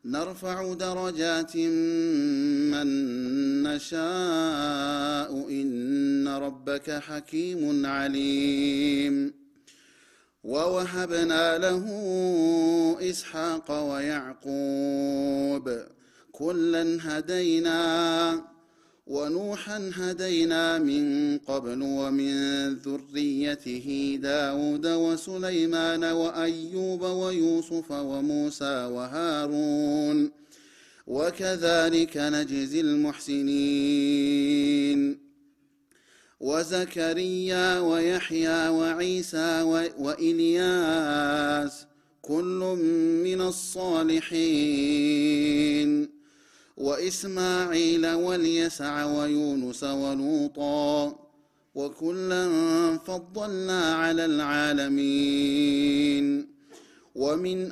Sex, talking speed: male, 45 wpm